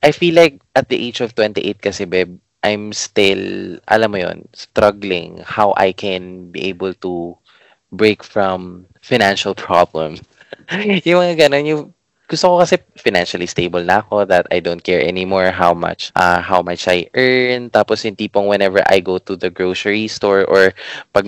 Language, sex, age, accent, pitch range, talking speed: English, male, 20-39, Filipino, 90-115 Hz, 160 wpm